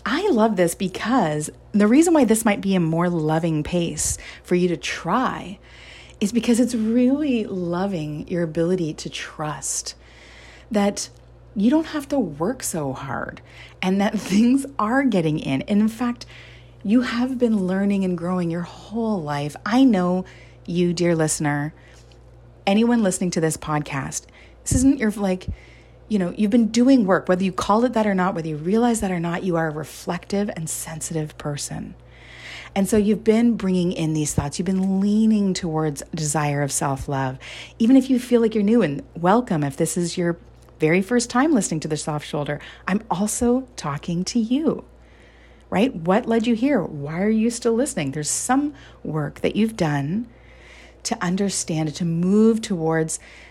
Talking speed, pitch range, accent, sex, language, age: 175 wpm, 155-225 Hz, American, female, English, 30-49